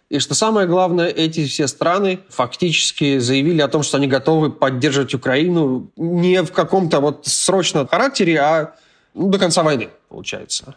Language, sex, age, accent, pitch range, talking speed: Russian, male, 20-39, native, 135-170 Hz, 155 wpm